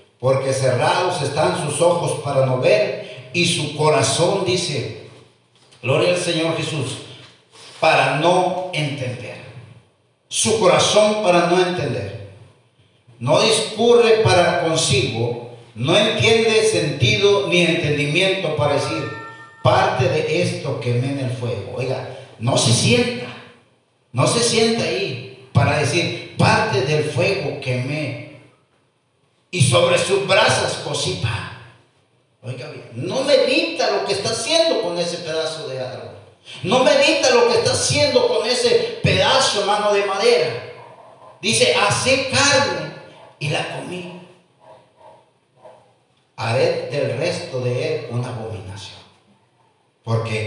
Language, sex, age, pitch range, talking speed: Spanish, male, 50-69, 125-180 Hz, 120 wpm